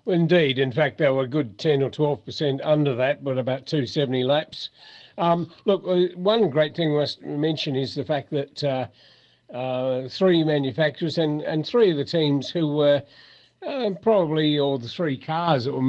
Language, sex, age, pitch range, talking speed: English, male, 50-69, 135-155 Hz, 185 wpm